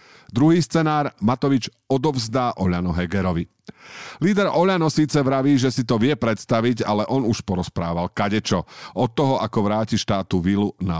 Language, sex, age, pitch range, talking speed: Slovak, male, 50-69, 95-130 Hz, 145 wpm